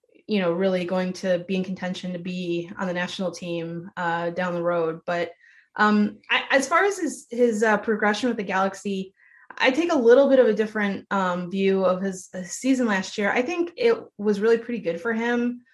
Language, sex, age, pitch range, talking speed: English, female, 20-39, 185-225 Hz, 215 wpm